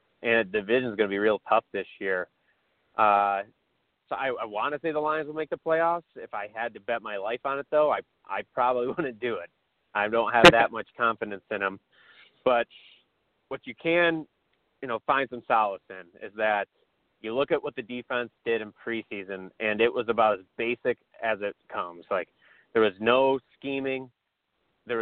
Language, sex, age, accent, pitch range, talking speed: English, male, 30-49, American, 115-135 Hz, 200 wpm